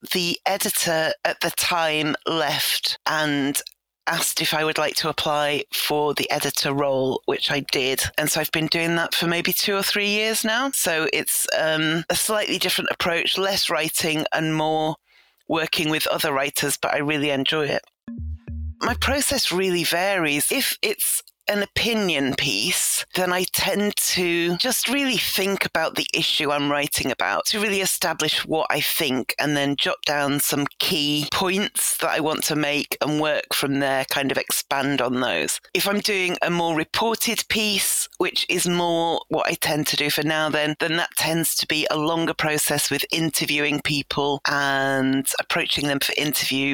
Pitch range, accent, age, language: 145-180 Hz, British, 30-49, English